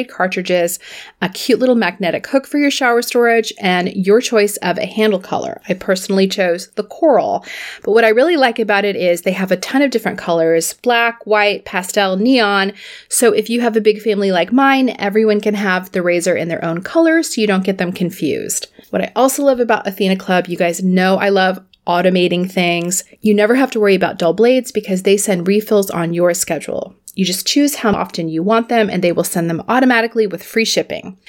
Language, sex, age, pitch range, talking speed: English, female, 30-49, 180-230 Hz, 215 wpm